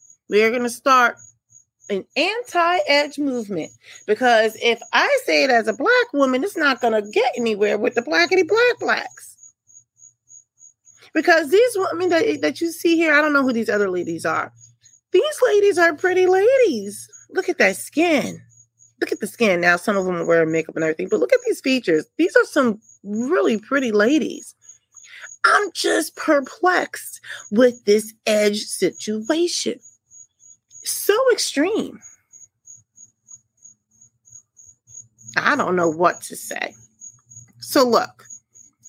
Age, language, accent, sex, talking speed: 30-49, English, American, female, 145 wpm